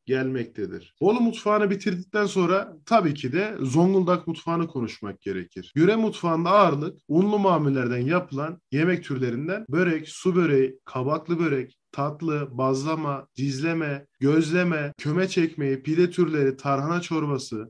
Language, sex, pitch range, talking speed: Turkish, male, 140-180 Hz, 120 wpm